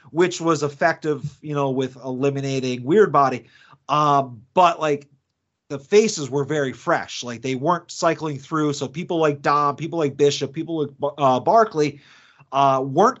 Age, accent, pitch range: 30-49, American, 145-180 Hz